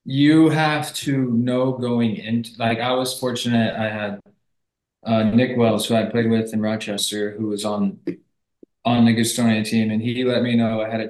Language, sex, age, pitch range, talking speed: English, male, 20-39, 110-120 Hz, 190 wpm